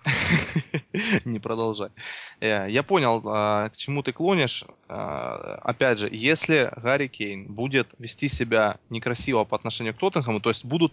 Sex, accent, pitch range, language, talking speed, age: male, native, 115-145 Hz, Russian, 130 wpm, 20-39